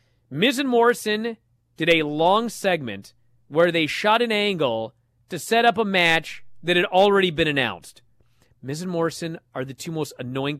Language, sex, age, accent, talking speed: English, male, 30-49, American, 170 wpm